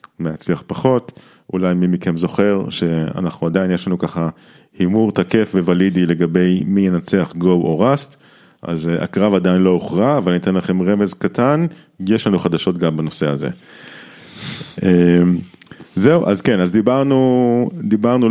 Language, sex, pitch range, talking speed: Hebrew, male, 85-105 Hz, 140 wpm